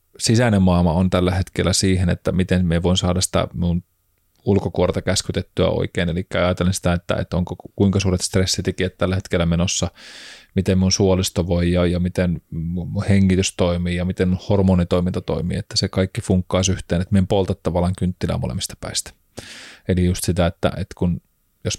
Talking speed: 170 wpm